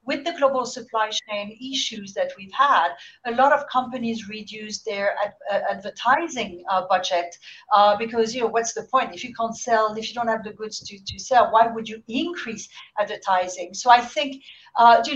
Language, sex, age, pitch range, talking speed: English, female, 50-69, 205-245 Hz, 200 wpm